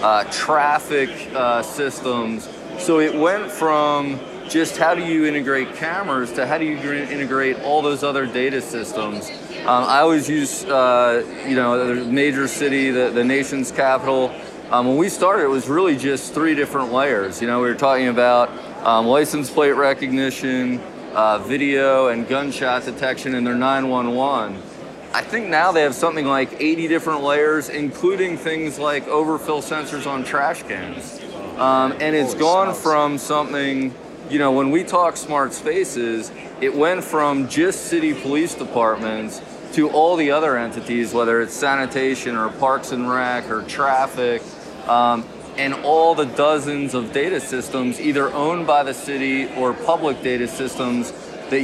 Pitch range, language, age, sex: 125-150 Hz, English, 30-49, male